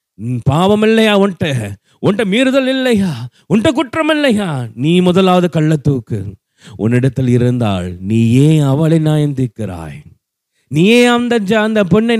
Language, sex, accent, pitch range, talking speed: Tamil, male, native, 160-250 Hz, 100 wpm